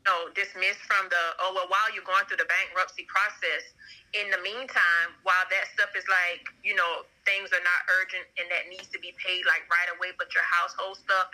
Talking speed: 210 wpm